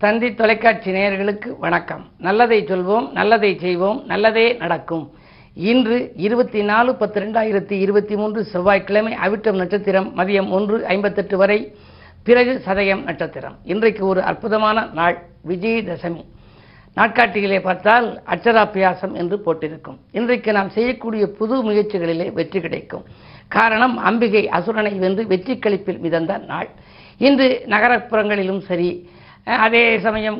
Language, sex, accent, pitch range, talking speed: Tamil, female, native, 185-220 Hz, 115 wpm